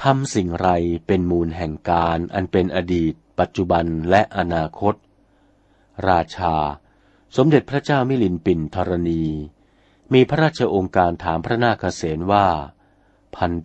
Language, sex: Thai, male